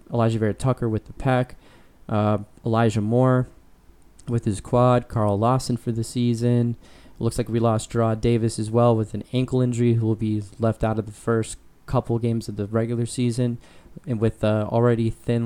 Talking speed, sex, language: 185 wpm, male, English